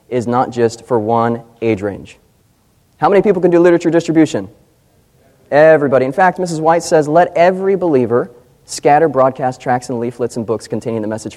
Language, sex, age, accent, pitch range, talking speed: English, male, 30-49, American, 115-150 Hz, 175 wpm